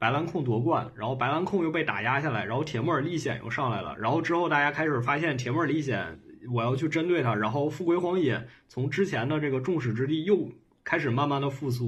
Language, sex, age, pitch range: Chinese, male, 20-39, 120-165 Hz